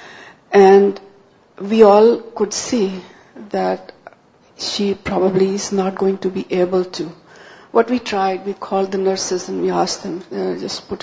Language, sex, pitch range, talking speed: Urdu, female, 185-205 Hz, 165 wpm